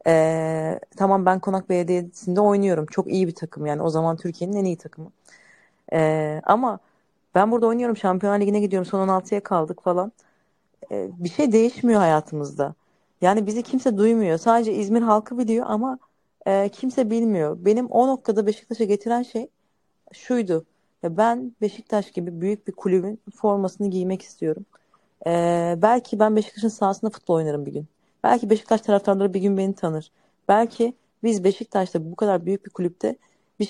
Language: Turkish